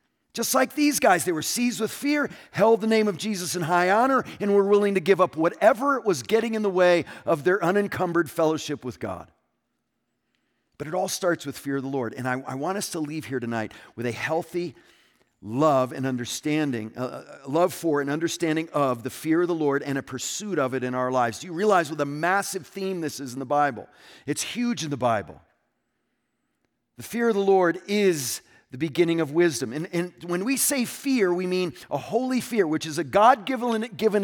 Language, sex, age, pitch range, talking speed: English, male, 40-59, 155-215 Hz, 210 wpm